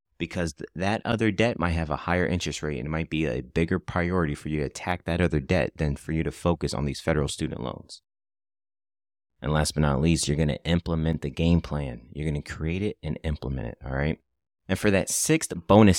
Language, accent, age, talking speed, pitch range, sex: English, American, 30-49, 230 wpm, 75-90 Hz, male